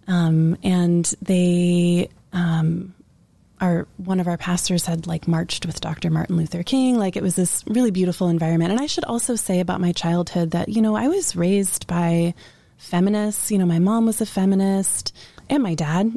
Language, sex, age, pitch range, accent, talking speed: English, female, 20-39, 175-220 Hz, American, 185 wpm